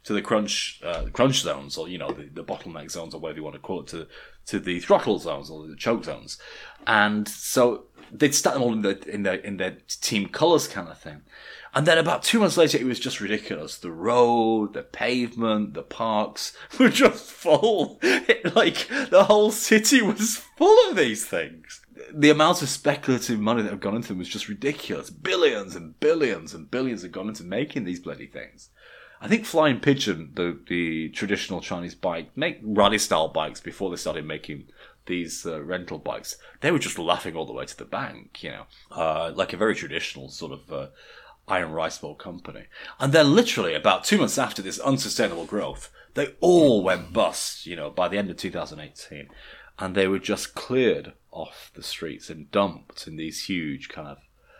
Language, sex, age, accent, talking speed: English, male, 30-49, British, 200 wpm